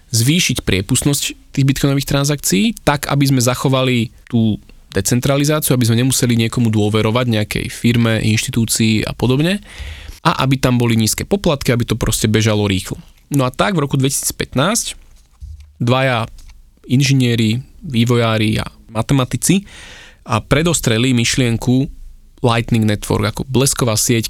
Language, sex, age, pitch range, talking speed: Slovak, male, 20-39, 110-135 Hz, 125 wpm